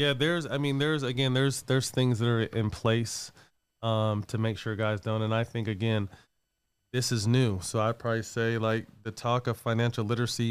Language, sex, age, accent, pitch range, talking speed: English, male, 20-39, American, 100-115 Hz, 205 wpm